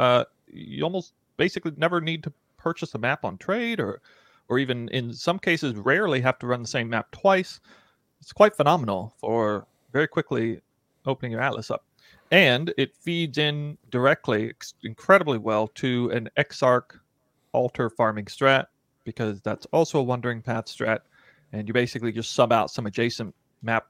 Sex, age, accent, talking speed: male, 30-49, American, 165 wpm